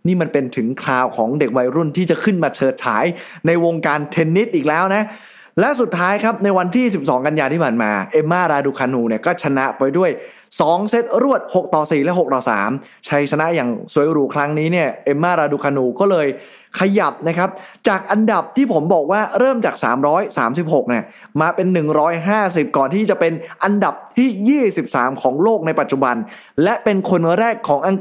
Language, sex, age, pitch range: Thai, male, 20-39, 145-205 Hz